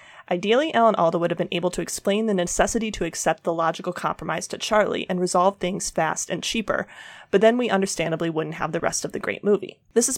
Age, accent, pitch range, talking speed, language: 30-49, American, 175-205 Hz, 225 wpm, English